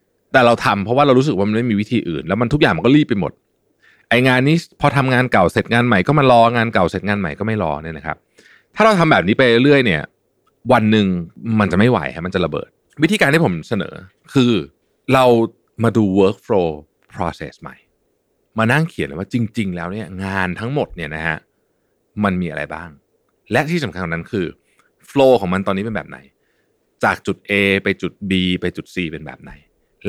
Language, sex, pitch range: Thai, male, 95-125 Hz